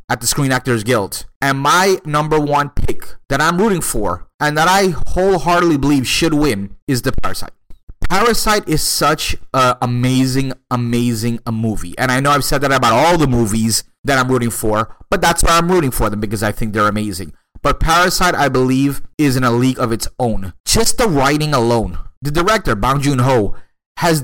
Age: 30-49